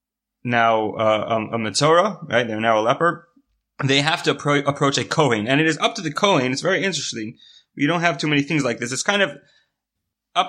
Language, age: English, 20-39